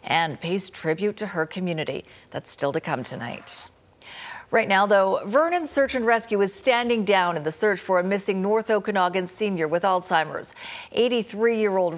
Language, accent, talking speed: English, American, 165 wpm